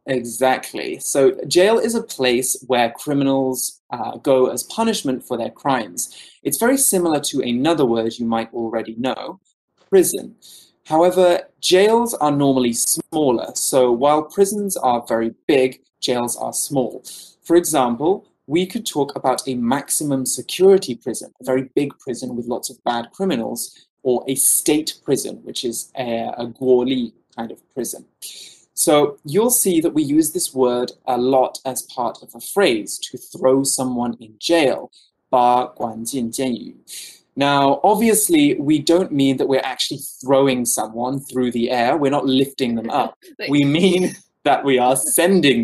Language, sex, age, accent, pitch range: Chinese, male, 20-39, British, 125-175 Hz